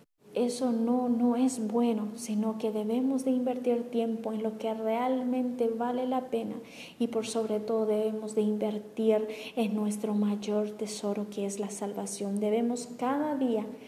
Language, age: Spanish, 20-39